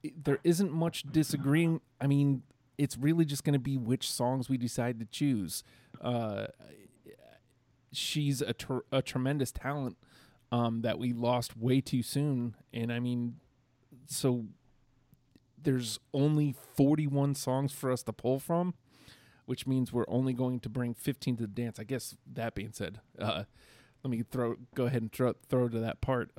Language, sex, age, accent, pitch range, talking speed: English, male, 30-49, American, 115-135 Hz, 165 wpm